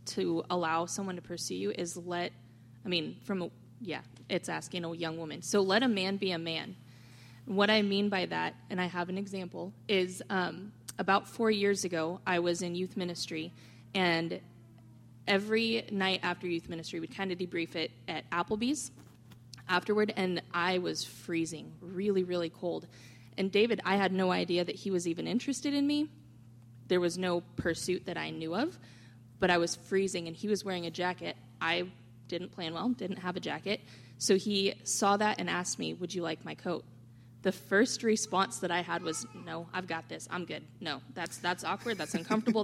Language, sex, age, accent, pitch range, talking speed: English, female, 20-39, American, 160-195 Hz, 195 wpm